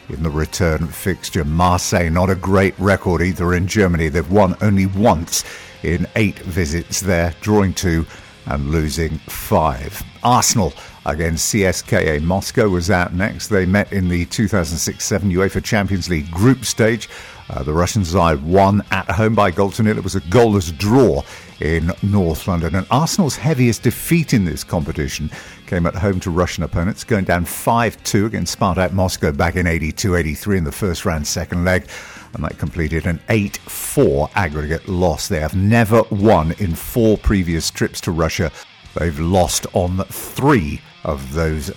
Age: 50-69